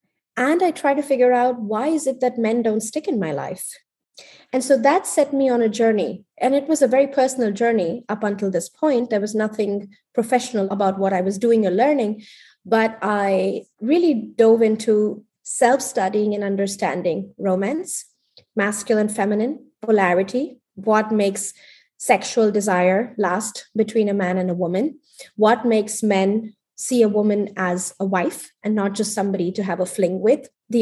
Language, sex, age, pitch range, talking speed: English, female, 20-39, 200-245 Hz, 170 wpm